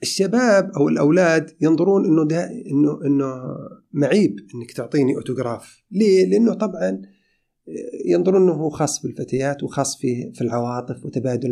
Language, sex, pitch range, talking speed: Arabic, male, 125-160 Hz, 125 wpm